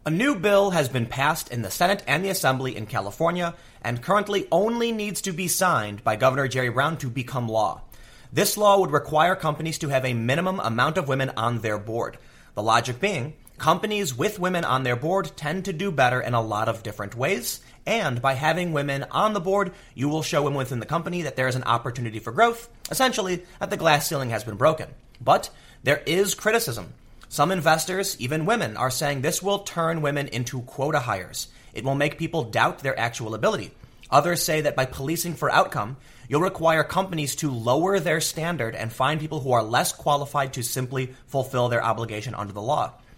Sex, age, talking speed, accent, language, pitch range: male, 30-49, 200 wpm, American, English, 125-175 Hz